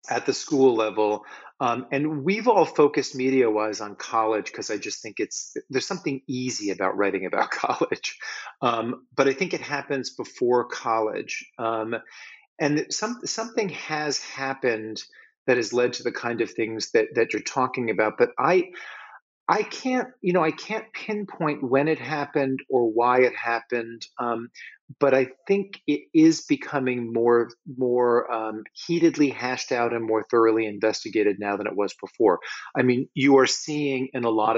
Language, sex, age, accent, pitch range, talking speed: English, male, 40-59, American, 110-145 Hz, 175 wpm